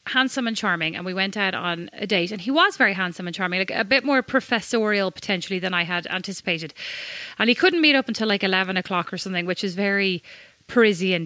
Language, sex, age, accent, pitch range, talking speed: English, female, 30-49, Irish, 185-230 Hz, 225 wpm